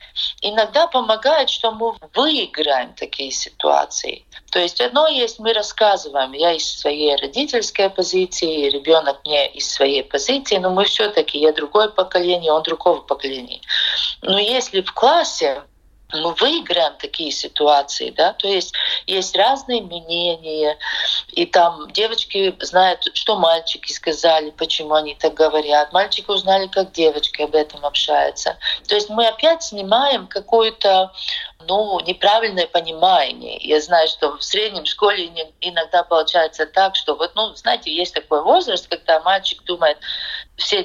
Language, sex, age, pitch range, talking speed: Russian, female, 40-59, 165-235 Hz, 135 wpm